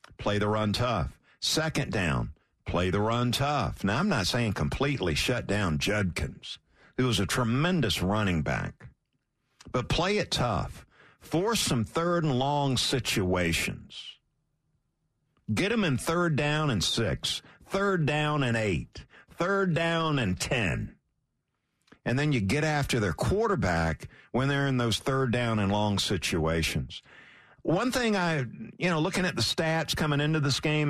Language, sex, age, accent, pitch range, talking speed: English, male, 50-69, American, 110-165 Hz, 150 wpm